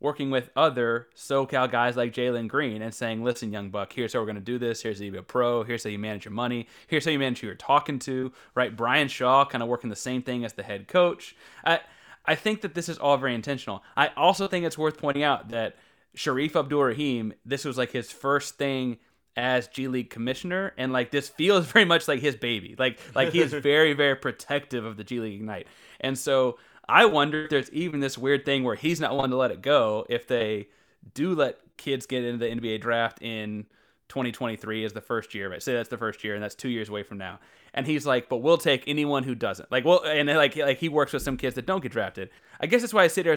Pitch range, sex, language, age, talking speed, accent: 115-145 Hz, male, English, 20-39, 250 wpm, American